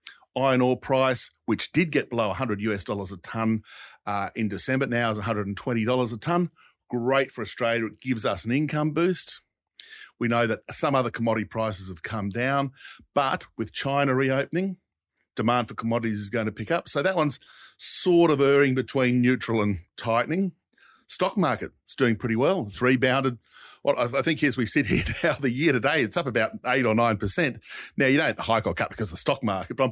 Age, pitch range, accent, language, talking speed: 50-69, 110-135 Hz, Australian, English, 200 wpm